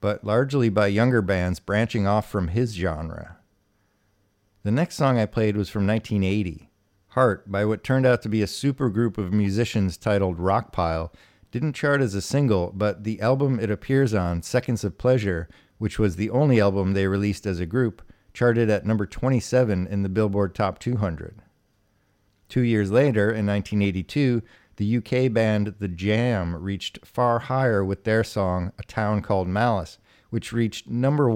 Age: 50-69